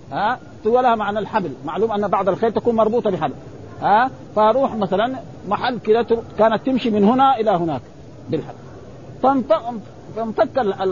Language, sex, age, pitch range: Arabic, male, 50-69, 185-240 Hz